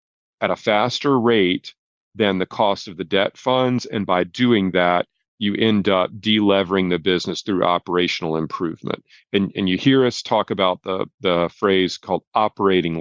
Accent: American